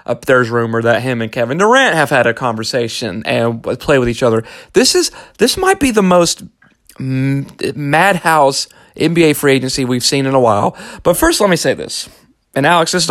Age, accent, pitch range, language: 30-49, American, 130-180 Hz, English